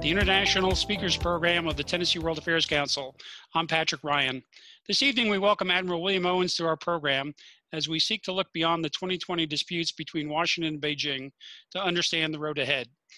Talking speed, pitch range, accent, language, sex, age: 185 wpm, 155-180 Hz, American, English, male, 40-59